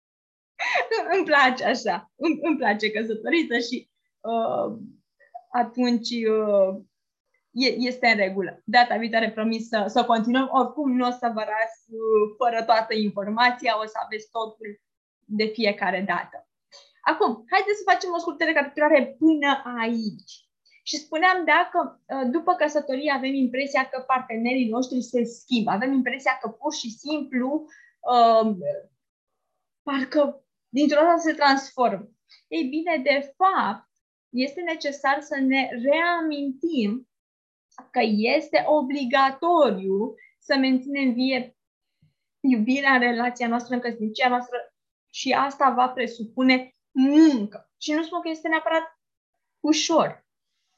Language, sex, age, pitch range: Romanian, female, 20-39, 235-305 Hz